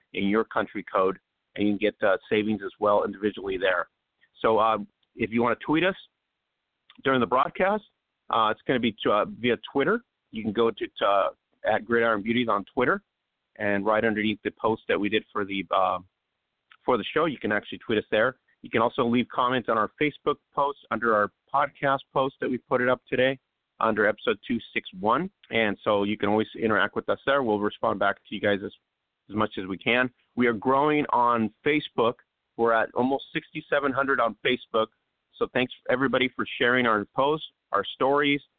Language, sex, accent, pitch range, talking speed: English, male, American, 110-135 Hz, 195 wpm